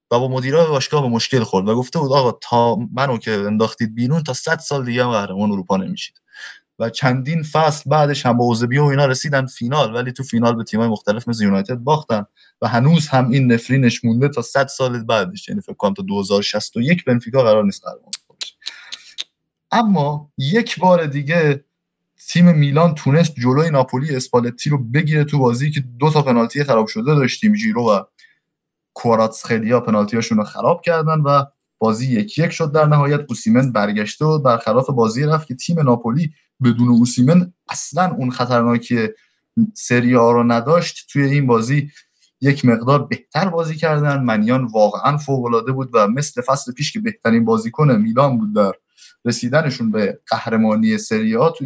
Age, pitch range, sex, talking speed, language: 20-39, 115-155 Hz, male, 165 wpm, Persian